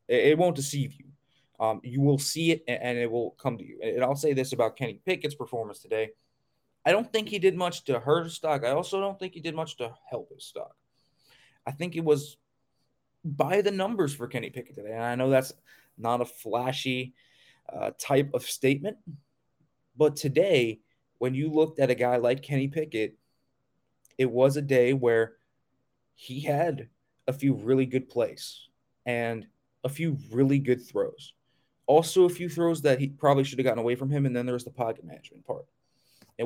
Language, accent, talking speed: English, American, 195 wpm